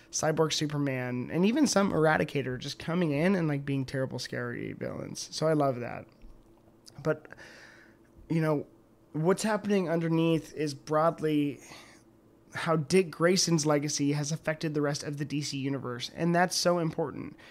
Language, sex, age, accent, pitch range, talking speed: English, male, 20-39, American, 140-165 Hz, 145 wpm